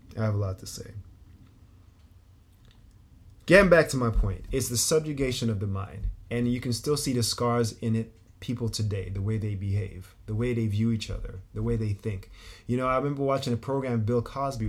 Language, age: English, 20-39